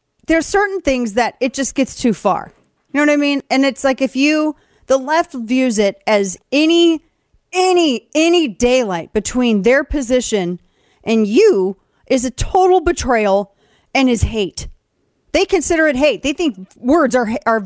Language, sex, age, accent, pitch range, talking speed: English, female, 30-49, American, 205-290 Hz, 170 wpm